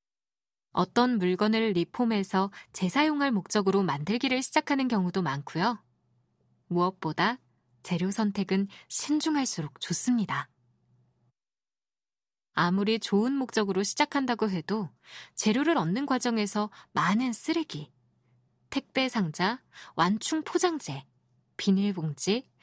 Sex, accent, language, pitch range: female, native, Korean, 155-245 Hz